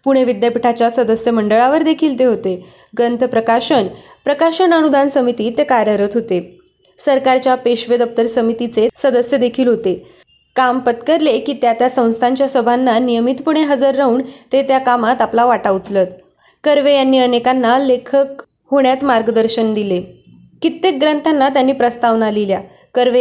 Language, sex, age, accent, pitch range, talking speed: Marathi, female, 20-39, native, 225-270 Hz, 130 wpm